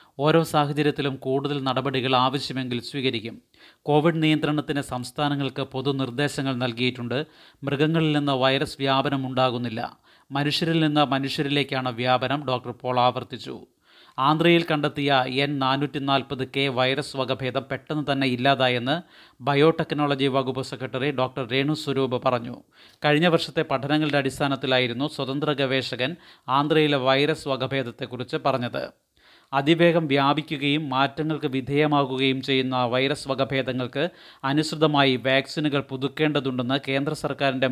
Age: 30-49